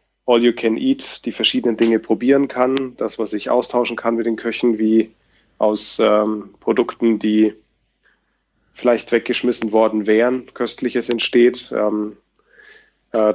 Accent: German